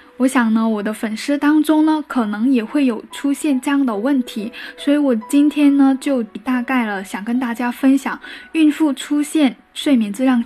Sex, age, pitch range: female, 10-29, 230-275 Hz